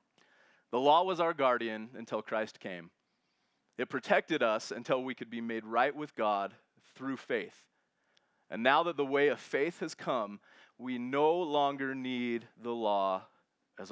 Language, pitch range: English, 110-130 Hz